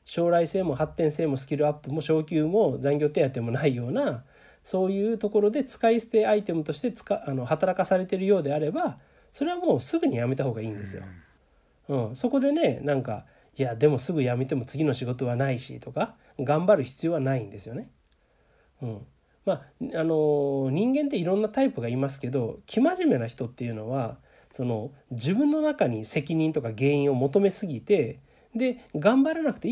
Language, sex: Japanese, male